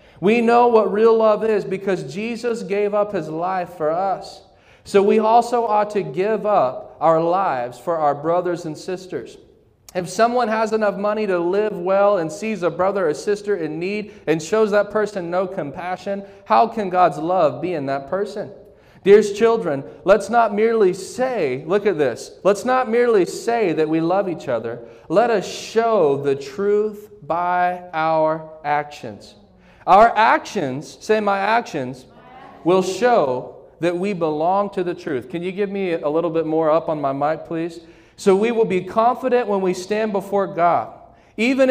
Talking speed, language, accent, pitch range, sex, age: 175 wpm, English, American, 165-210 Hz, male, 30-49